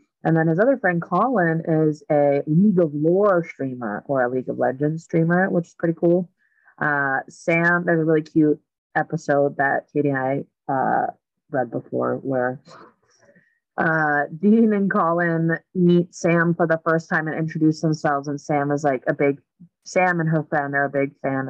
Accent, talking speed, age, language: American, 180 wpm, 30-49, English